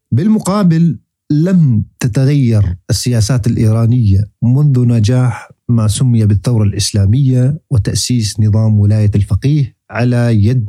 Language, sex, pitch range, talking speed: Arabic, male, 105-130 Hz, 95 wpm